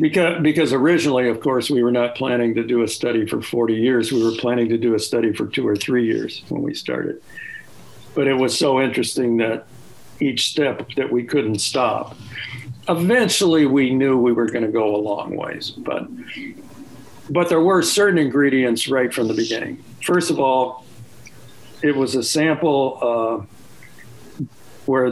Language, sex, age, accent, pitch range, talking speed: English, male, 60-79, American, 120-150 Hz, 170 wpm